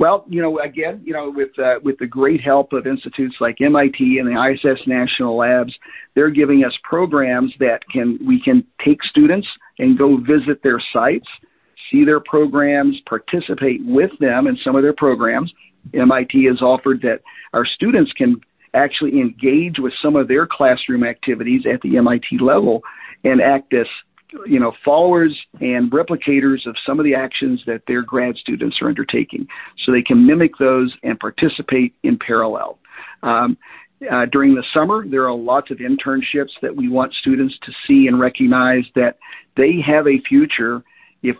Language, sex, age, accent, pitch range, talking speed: English, male, 50-69, American, 125-170 Hz, 170 wpm